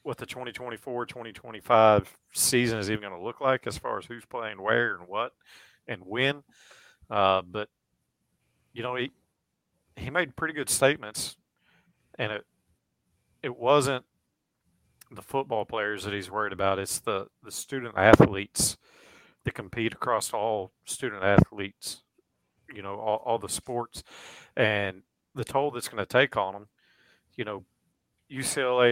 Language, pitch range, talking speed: English, 100-125 Hz, 145 wpm